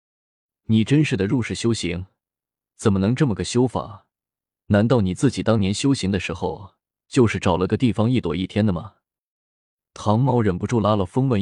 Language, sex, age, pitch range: Chinese, male, 20-39, 95-120 Hz